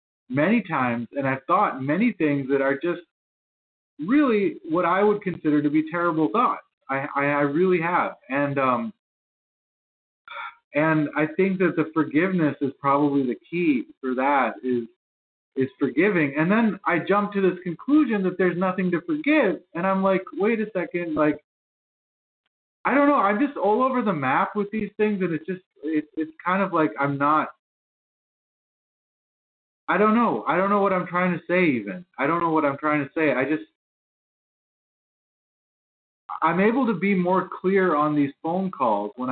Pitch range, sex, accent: 140-190 Hz, male, American